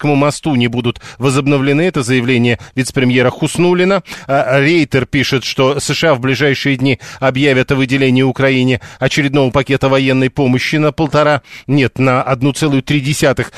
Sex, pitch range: male, 130-150 Hz